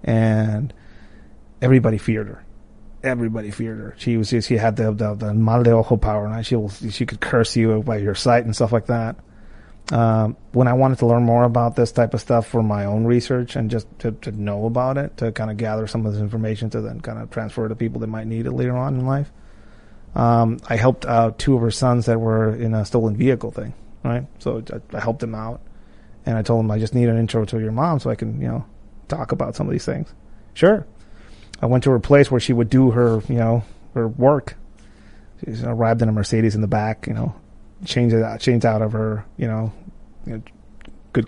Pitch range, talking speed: 110-120 Hz, 235 wpm